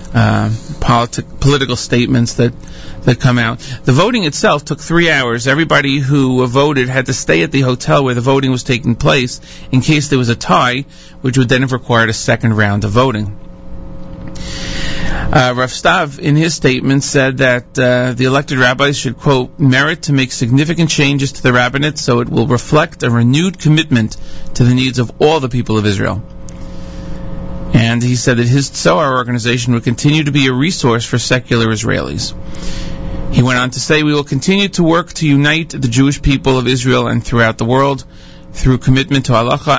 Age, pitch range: 40-59, 120-140 Hz